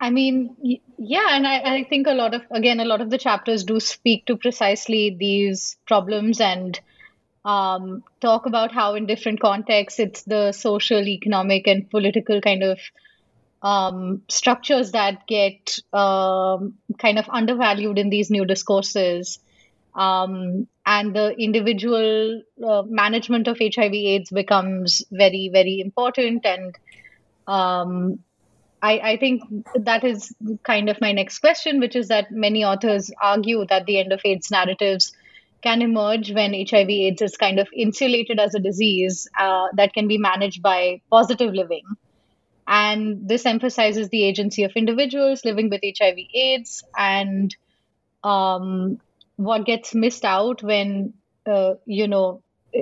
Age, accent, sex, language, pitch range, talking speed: 30-49, Indian, female, English, 195-230 Hz, 145 wpm